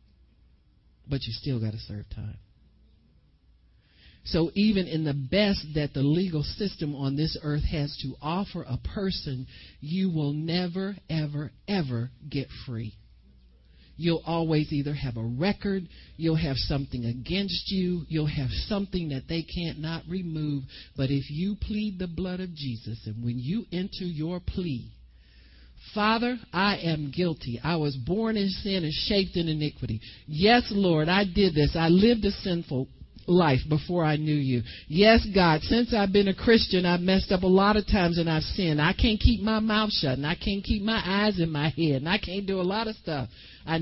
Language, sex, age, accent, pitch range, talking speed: English, male, 50-69, American, 130-195 Hz, 180 wpm